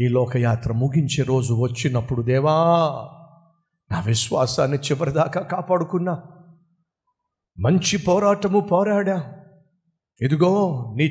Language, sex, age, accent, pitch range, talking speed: Telugu, male, 50-69, native, 130-180 Hz, 85 wpm